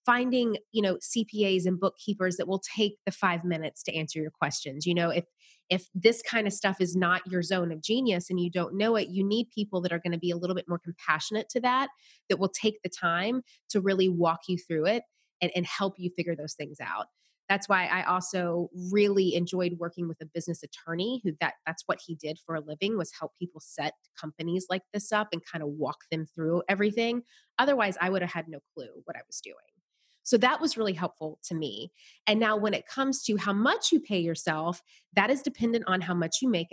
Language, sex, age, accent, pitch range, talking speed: English, female, 30-49, American, 170-210 Hz, 230 wpm